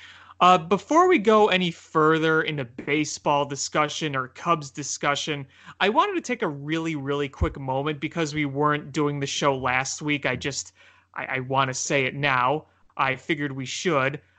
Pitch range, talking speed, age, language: 140-165 Hz, 175 wpm, 30-49, English